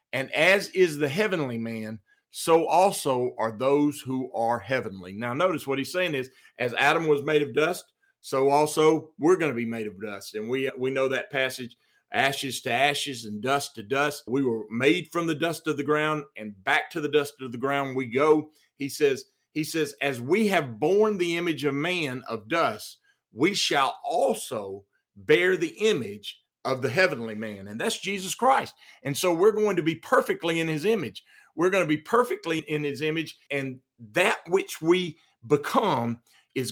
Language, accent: English, American